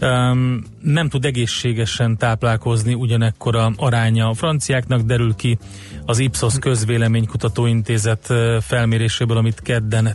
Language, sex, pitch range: Hungarian, male, 110-125 Hz